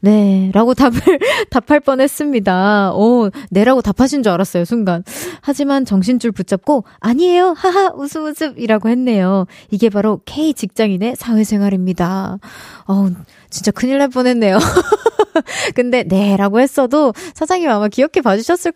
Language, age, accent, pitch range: Korean, 20-39, native, 195-275 Hz